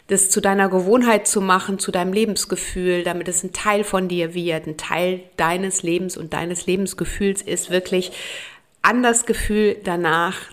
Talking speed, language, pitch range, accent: 165 wpm, German, 180-215 Hz, German